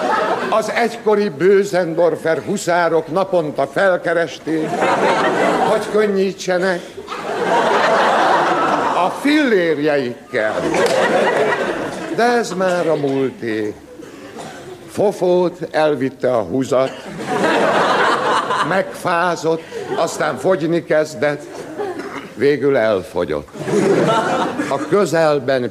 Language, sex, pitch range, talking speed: Hungarian, male, 145-195 Hz, 65 wpm